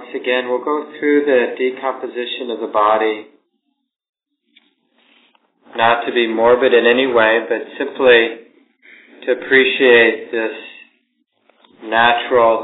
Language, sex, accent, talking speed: English, male, American, 110 wpm